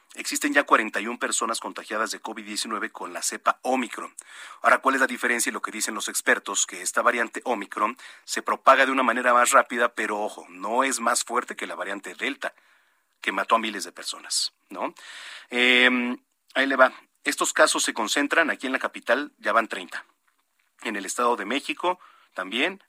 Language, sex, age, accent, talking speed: Spanish, male, 40-59, Mexican, 185 wpm